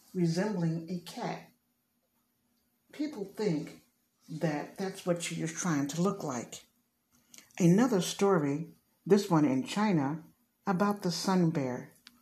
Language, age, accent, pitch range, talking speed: English, 60-79, American, 160-210 Hz, 115 wpm